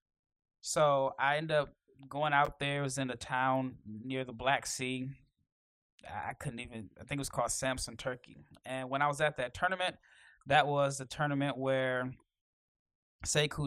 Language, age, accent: English, 20-39, American